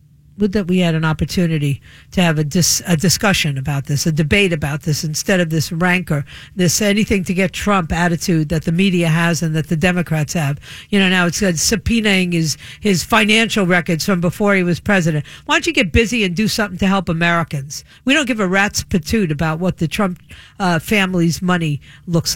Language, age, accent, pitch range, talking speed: English, 50-69, American, 165-205 Hz, 205 wpm